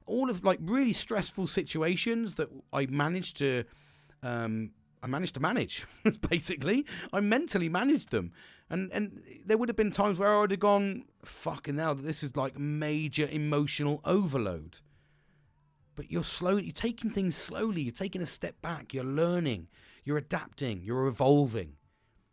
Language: English